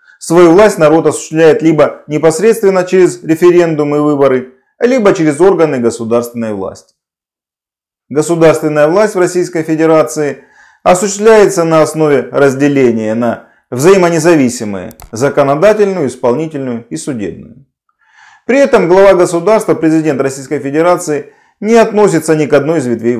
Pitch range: 135-180 Hz